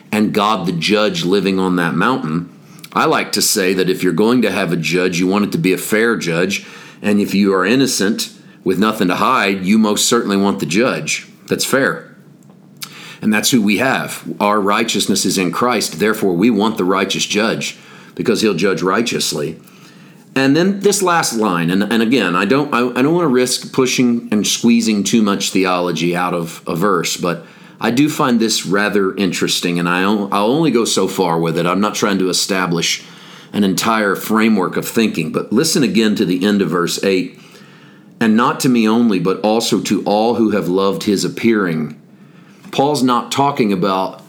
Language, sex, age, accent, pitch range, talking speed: English, male, 40-59, American, 95-125 Hz, 190 wpm